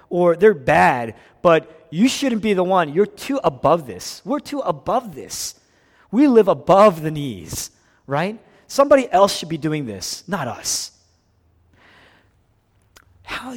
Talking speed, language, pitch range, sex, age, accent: 140 wpm, English, 100-155 Hz, male, 30-49, American